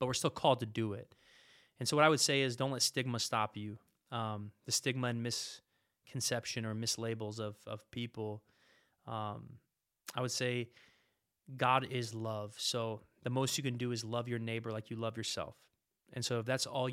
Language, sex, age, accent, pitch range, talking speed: English, male, 20-39, American, 110-125 Hz, 195 wpm